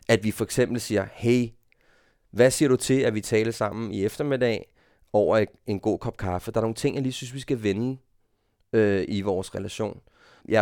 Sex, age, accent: male, 30-49, native